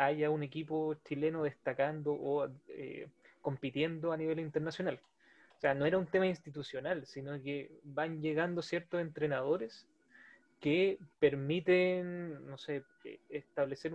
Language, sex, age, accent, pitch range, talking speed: Spanish, male, 20-39, Argentinian, 145-180 Hz, 125 wpm